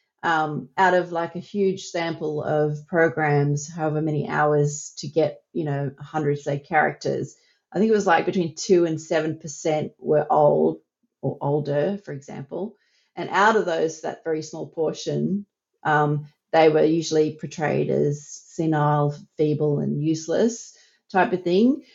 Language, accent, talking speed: English, Australian, 155 wpm